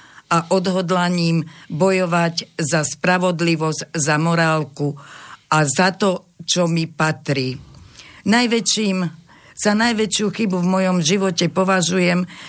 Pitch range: 165-195 Hz